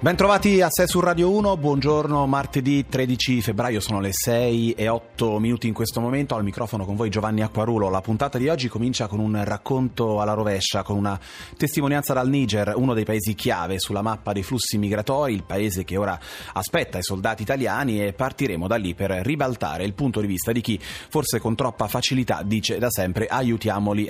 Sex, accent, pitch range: male, native, 100-130 Hz